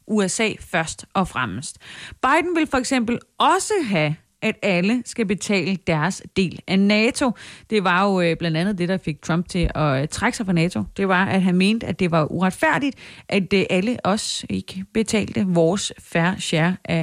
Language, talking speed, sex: Danish, 180 wpm, female